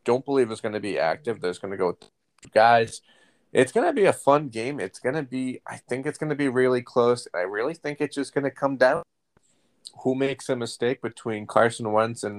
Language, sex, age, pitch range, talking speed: English, male, 30-49, 105-120 Hz, 240 wpm